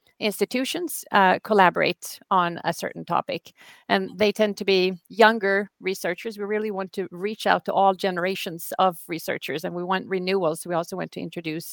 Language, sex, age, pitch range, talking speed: Swedish, female, 40-59, 180-220 Hz, 175 wpm